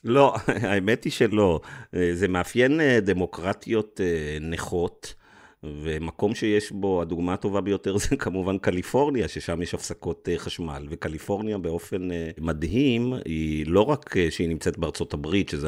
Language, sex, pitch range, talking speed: Hebrew, male, 80-95 Hz, 125 wpm